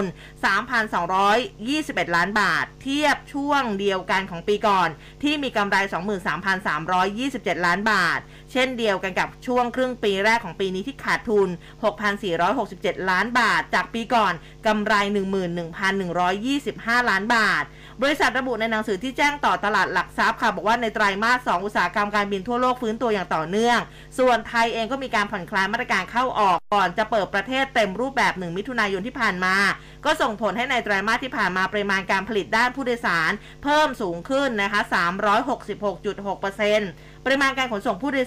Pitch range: 195-250 Hz